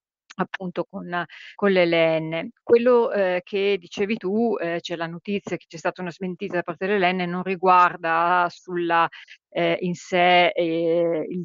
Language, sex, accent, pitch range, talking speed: Italian, female, native, 165-190 Hz, 145 wpm